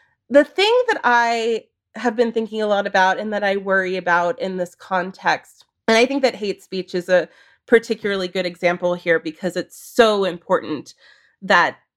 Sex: female